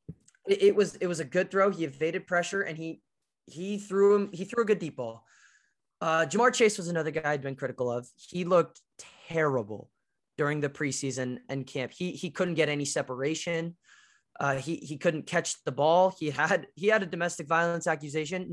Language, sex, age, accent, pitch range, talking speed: English, male, 20-39, American, 150-195 Hz, 195 wpm